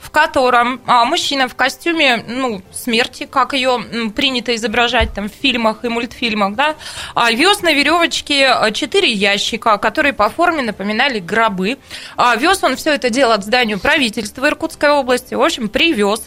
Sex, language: female, Russian